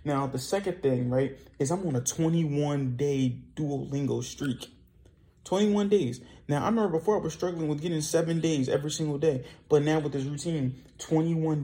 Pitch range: 130-155 Hz